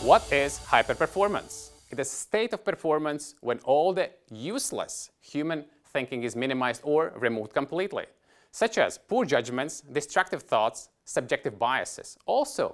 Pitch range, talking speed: 135-195 Hz, 135 wpm